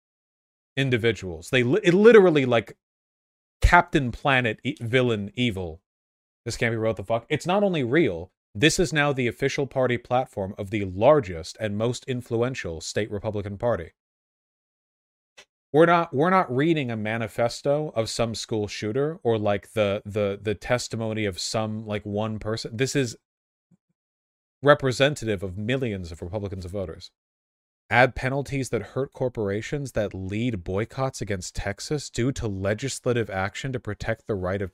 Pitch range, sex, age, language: 105-135 Hz, male, 30-49, English